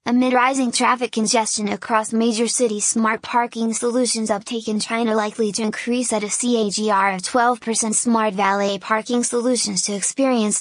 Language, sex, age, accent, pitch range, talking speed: English, female, 20-39, American, 210-235 Hz, 155 wpm